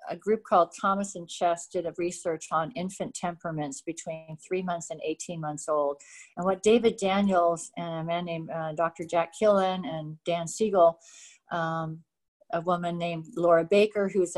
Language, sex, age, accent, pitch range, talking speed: English, female, 50-69, American, 170-215 Hz, 170 wpm